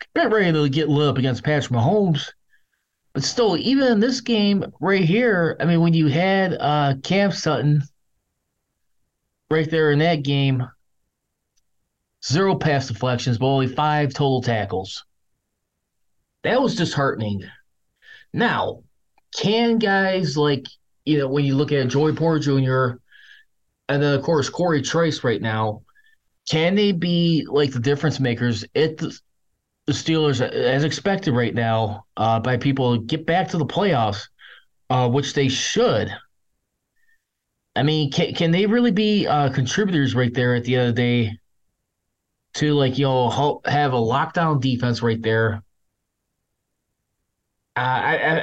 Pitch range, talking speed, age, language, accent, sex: 125-165 Hz, 145 wpm, 20-39, English, American, male